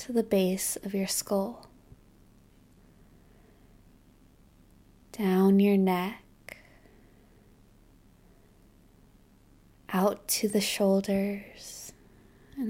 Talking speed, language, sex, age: 65 wpm, English, female, 20-39